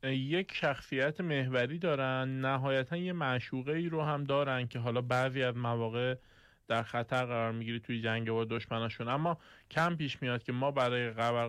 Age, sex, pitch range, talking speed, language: 20-39, male, 120-145 Hz, 160 wpm, Persian